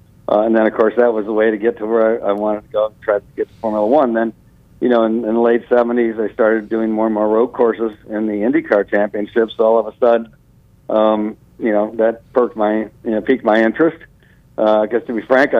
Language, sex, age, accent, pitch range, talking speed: English, male, 50-69, American, 105-115 Hz, 250 wpm